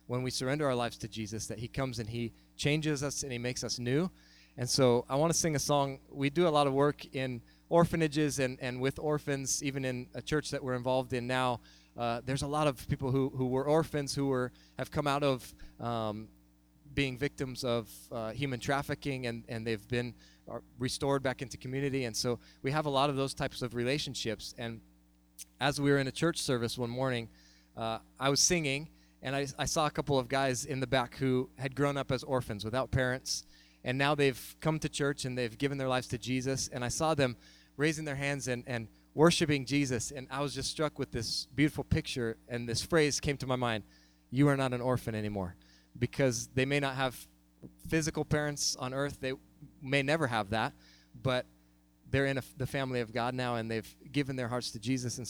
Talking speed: 215 wpm